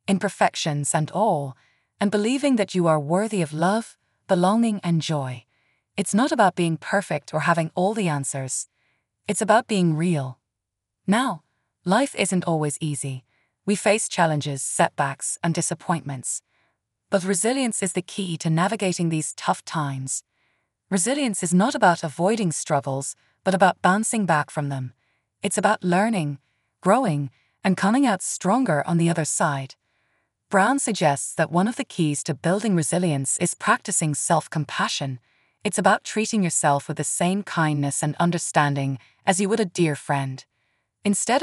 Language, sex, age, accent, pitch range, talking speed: English, female, 20-39, Irish, 140-200 Hz, 150 wpm